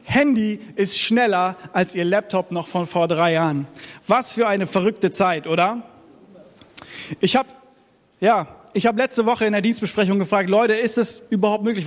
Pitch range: 190-225 Hz